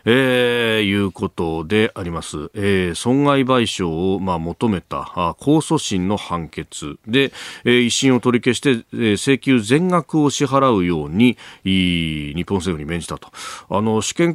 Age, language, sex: 40-59, Japanese, male